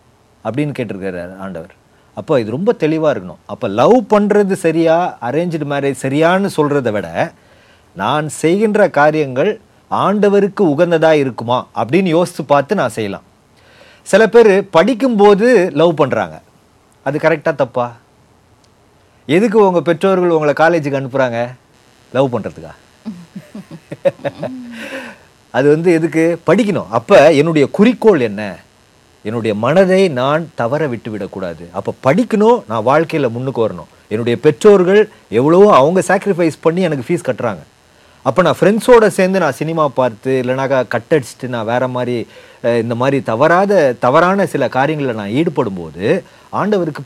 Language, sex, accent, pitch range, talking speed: Tamil, male, native, 120-185 Hz, 120 wpm